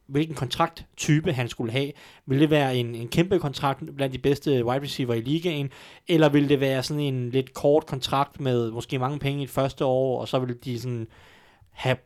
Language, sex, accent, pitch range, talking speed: Danish, male, native, 125-150 Hz, 210 wpm